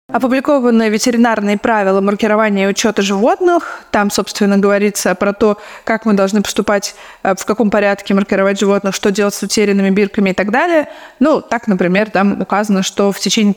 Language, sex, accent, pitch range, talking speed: Russian, female, native, 200-235 Hz, 165 wpm